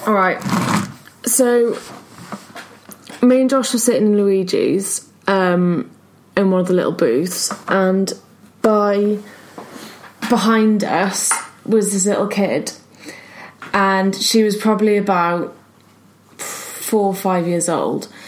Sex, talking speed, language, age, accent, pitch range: female, 115 wpm, English, 20-39, British, 185-220 Hz